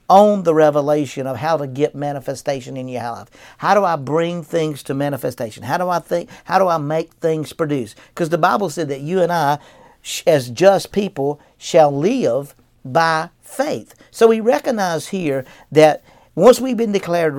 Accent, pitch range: American, 135-185 Hz